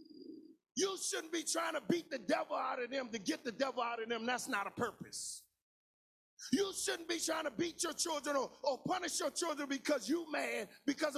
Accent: American